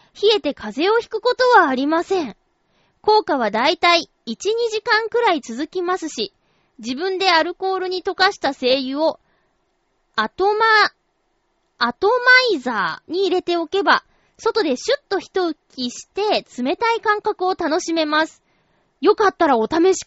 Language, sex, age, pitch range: Japanese, female, 20-39, 300-420 Hz